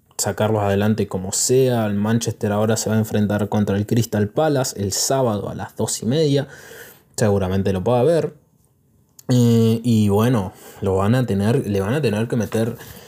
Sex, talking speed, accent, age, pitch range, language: male, 180 wpm, Argentinian, 20-39, 105-125 Hz, Spanish